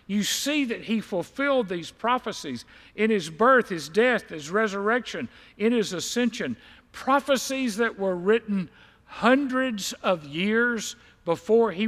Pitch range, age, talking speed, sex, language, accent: 170-240 Hz, 50-69, 130 wpm, male, English, American